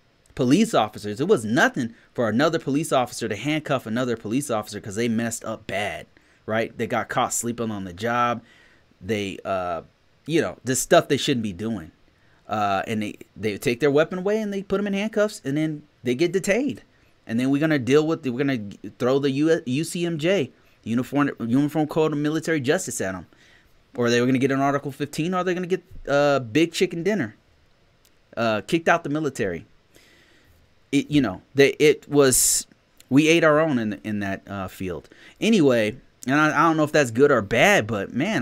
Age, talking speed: 30-49, 205 wpm